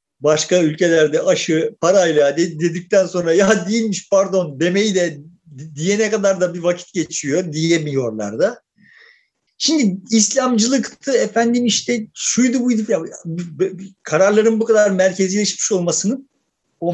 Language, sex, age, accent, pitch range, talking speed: Turkish, male, 50-69, native, 175-230 Hz, 115 wpm